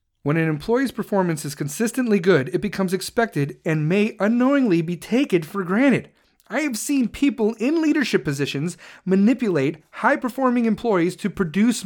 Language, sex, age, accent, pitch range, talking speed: English, male, 30-49, American, 185-245 Hz, 145 wpm